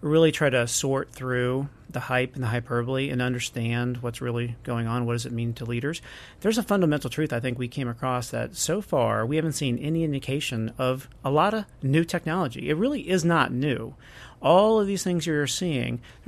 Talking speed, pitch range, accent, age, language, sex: 210 wpm, 125-155 Hz, American, 40-59, English, male